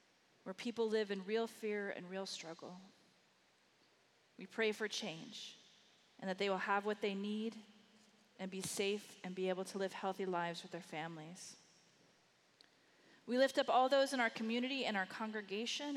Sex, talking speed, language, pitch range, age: female, 170 wpm, English, 185-220 Hz, 30-49